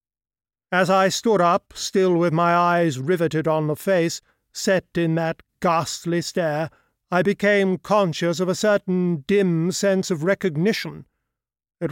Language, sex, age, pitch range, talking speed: English, male, 50-69, 155-190 Hz, 140 wpm